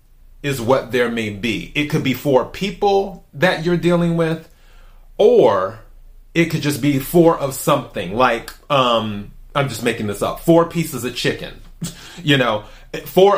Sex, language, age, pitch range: male, English, 30-49, 125-165 Hz